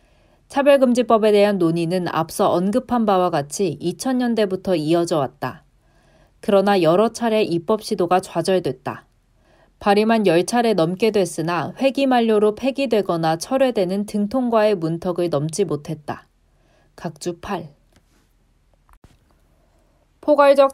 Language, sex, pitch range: Korean, female, 175-225 Hz